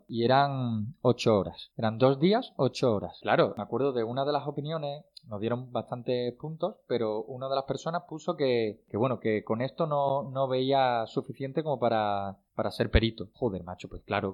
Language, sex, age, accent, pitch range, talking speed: Spanish, male, 20-39, Spanish, 115-170 Hz, 195 wpm